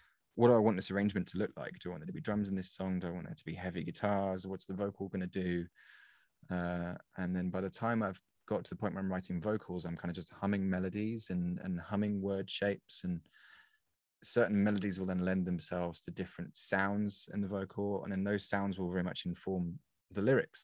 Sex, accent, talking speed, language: male, British, 240 wpm, English